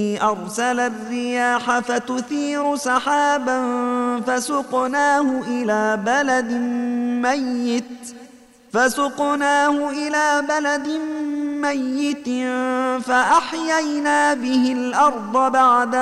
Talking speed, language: 60 wpm, Arabic